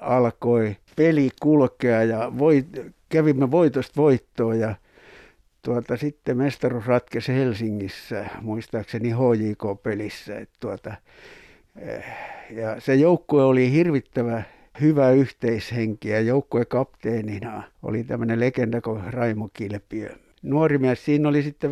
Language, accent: Finnish, native